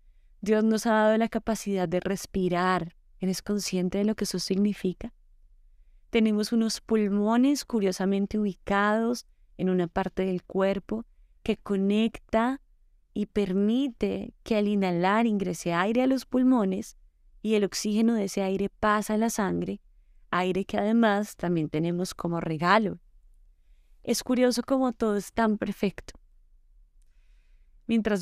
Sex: female